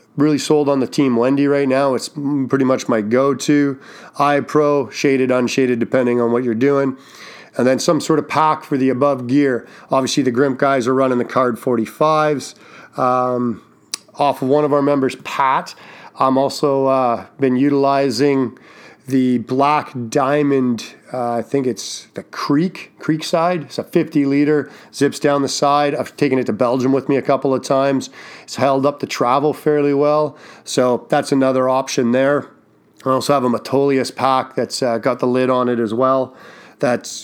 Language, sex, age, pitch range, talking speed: English, male, 40-59, 130-150 Hz, 180 wpm